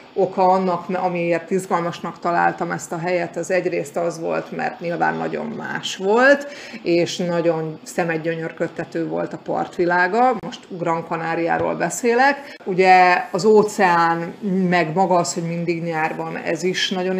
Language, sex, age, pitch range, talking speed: Hungarian, female, 30-49, 170-190 Hz, 135 wpm